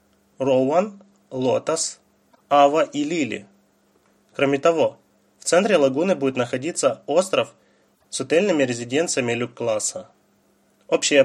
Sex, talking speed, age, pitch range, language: male, 95 wpm, 20-39, 120-145 Hz, Russian